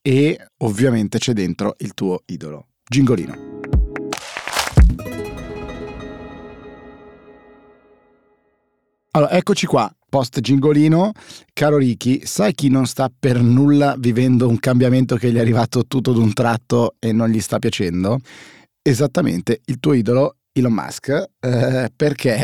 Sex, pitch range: male, 110-135 Hz